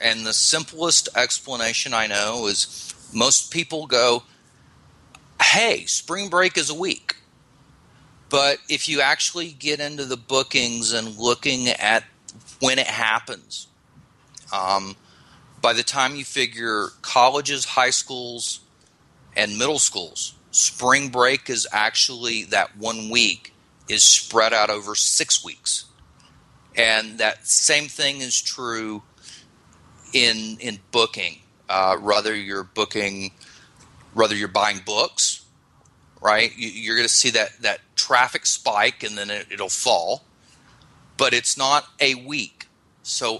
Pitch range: 110-135 Hz